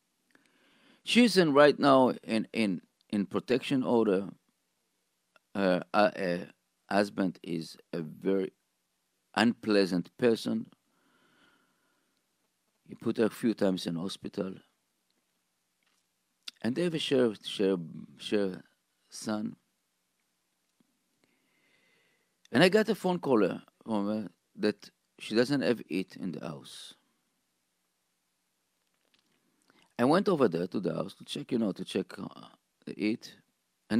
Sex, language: male, English